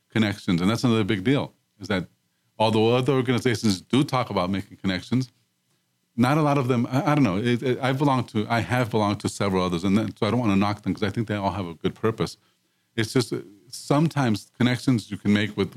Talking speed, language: 235 wpm, English